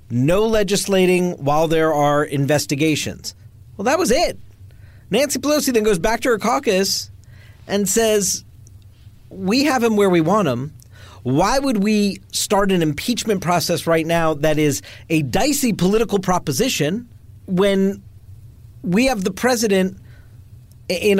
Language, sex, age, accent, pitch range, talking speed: English, male, 40-59, American, 145-215 Hz, 135 wpm